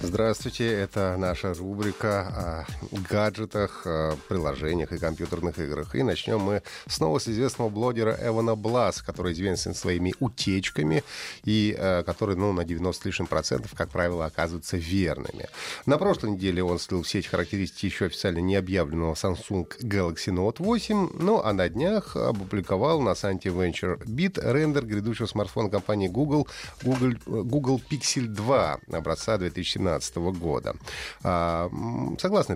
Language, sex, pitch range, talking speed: Russian, male, 90-120 Hz, 135 wpm